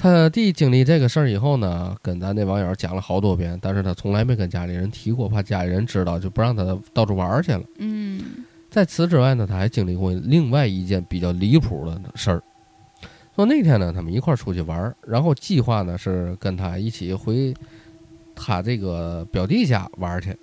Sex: male